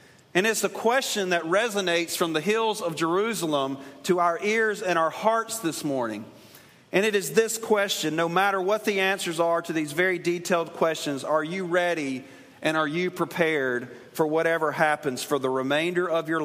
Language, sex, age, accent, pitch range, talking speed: English, male, 40-59, American, 130-190 Hz, 180 wpm